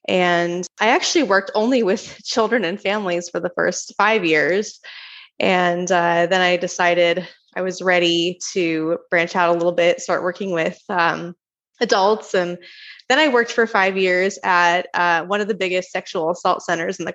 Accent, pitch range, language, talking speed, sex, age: American, 175-220 Hz, English, 180 wpm, female, 20-39